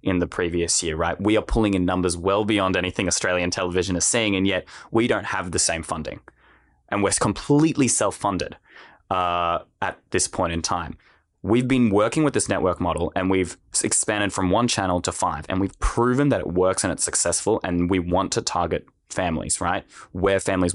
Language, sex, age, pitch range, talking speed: English, male, 20-39, 90-110 Hz, 195 wpm